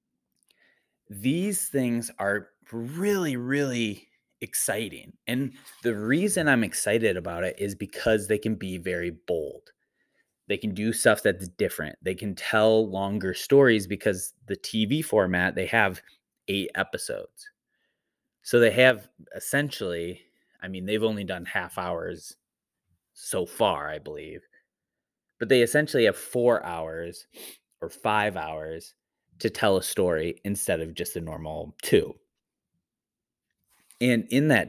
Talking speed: 130 wpm